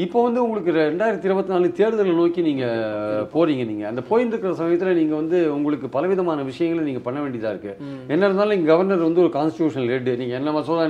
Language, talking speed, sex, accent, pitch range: Tamil, 175 wpm, male, native, 150-200 Hz